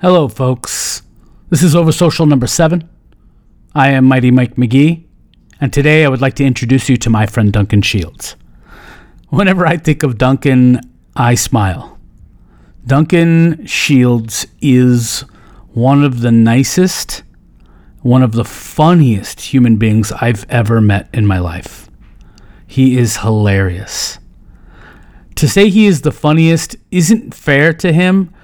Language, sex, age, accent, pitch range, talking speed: English, male, 40-59, American, 115-160 Hz, 135 wpm